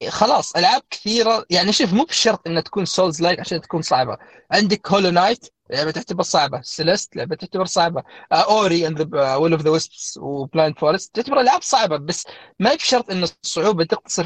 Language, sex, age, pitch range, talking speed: Arabic, male, 20-39, 160-200 Hz, 185 wpm